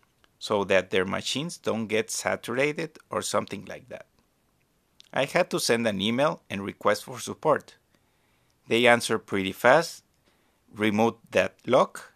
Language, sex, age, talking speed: English, male, 50-69, 140 wpm